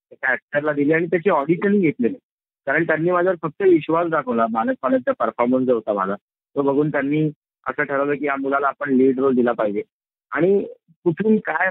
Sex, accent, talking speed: male, native, 200 wpm